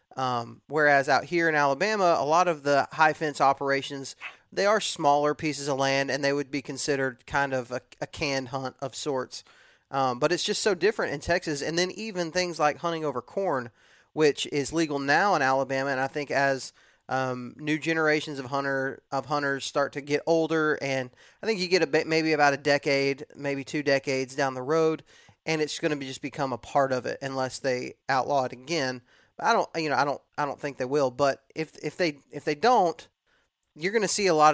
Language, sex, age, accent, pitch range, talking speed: English, male, 30-49, American, 135-155 Hz, 215 wpm